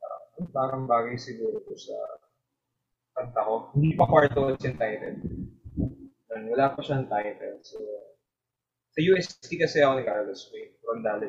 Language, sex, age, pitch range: Filipino, male, 20-39, 125-190 Hz